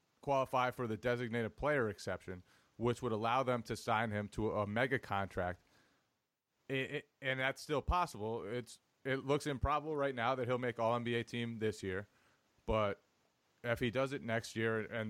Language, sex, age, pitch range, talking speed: English, male, 30-49, 105-125 Hz, 170 wpm